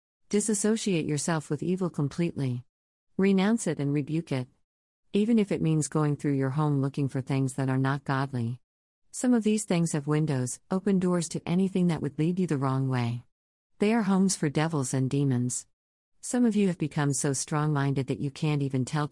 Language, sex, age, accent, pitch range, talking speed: English, female, 50-69, American, 130-165 Hz, 190 wpm